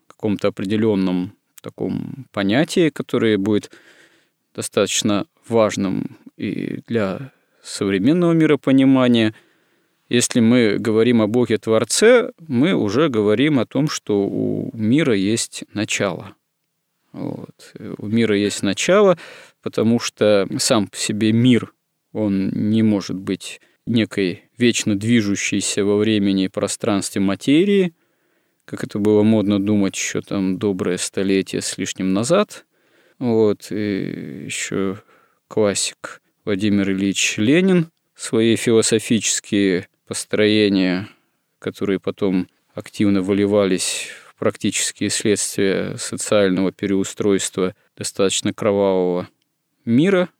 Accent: native